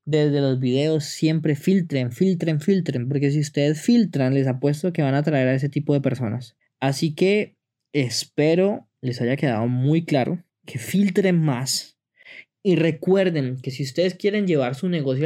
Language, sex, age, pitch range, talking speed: Spanish, male, 20-39, 120-145 Hz, 165 wpm